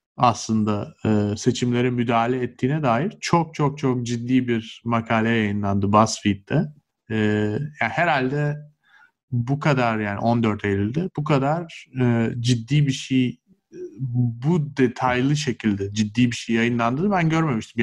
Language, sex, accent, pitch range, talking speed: Turkish, male, native, 110-140 Hz, 125 wpm